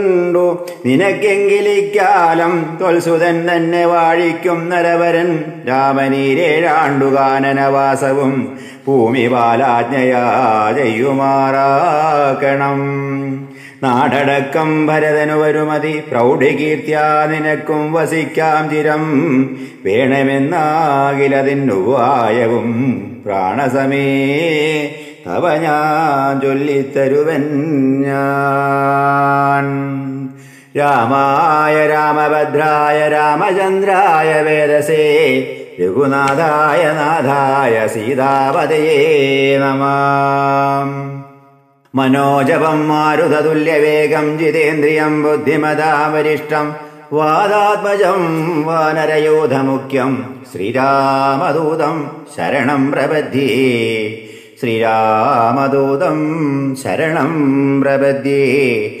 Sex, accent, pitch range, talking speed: male, native, 135-155 Hz, 40 wpm